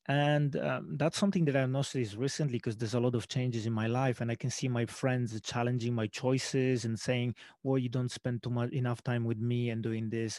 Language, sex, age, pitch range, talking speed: English, male, 30-49, 120-140 Hz, 235 wpm